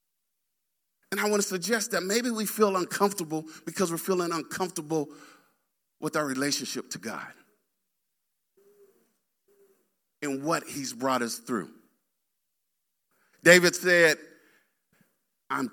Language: English